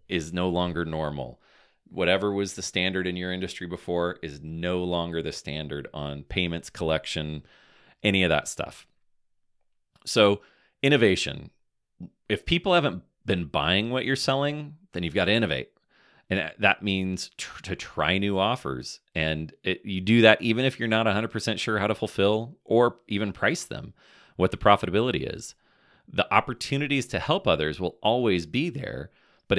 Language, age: English, 30-49